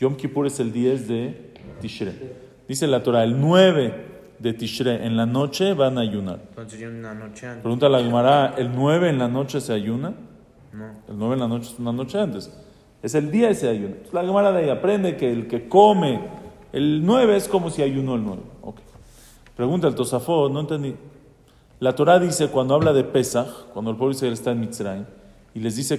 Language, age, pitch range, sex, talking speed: English, 40-59, 120-175 Hz, male, 200 wpm